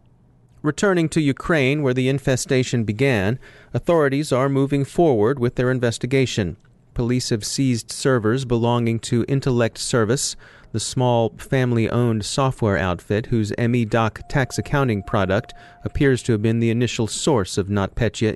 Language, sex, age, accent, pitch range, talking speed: English, male, 30-49, American, 110-135 Hz, 135 wpm